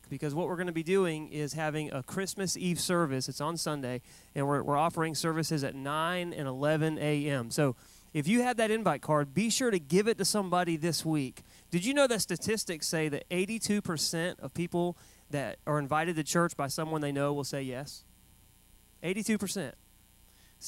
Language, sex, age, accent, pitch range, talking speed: English, male, 30-49, American, 145-185 Hz, 190 wpm